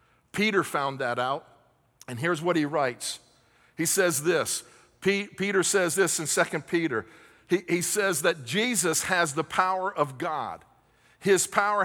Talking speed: 150 wpm